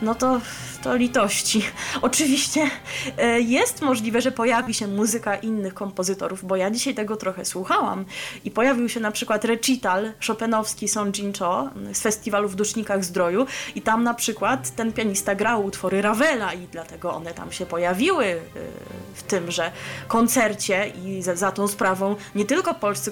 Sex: female